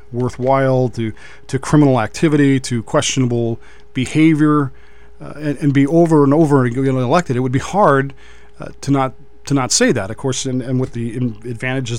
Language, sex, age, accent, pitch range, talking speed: English, male, 40-59, American, 125-160 Hz, 185 wpm